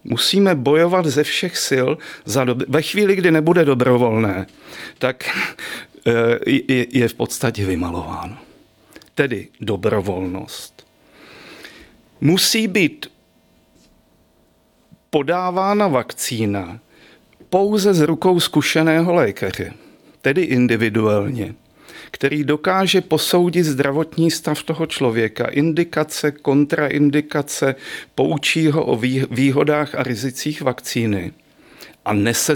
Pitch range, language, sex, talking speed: 115-160 Hz, Czech, male, 85 wpm